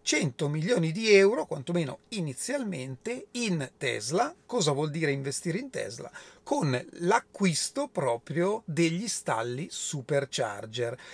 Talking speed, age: 110 wpm, 30-49